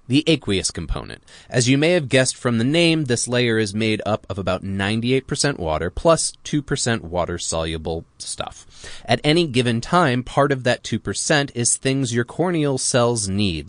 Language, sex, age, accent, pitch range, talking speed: English, male, 20-39, American, 95-145 Hz, 165 wpm